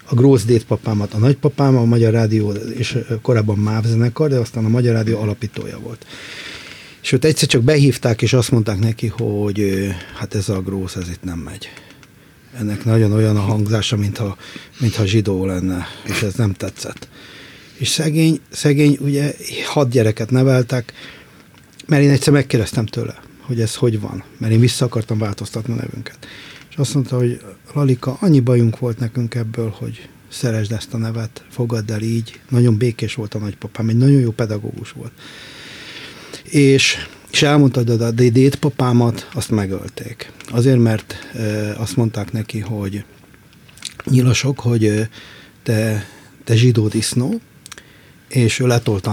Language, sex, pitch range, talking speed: Hungarian, male, 110-130 Hz, 150 wpm